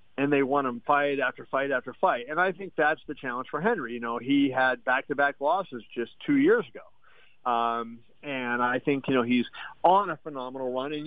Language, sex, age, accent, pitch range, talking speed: English, male, 50-69, American, 125-145 Hz, 210 wpm